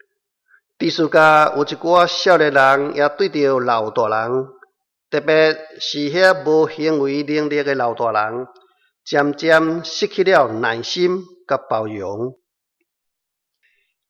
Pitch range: 140-195 Hz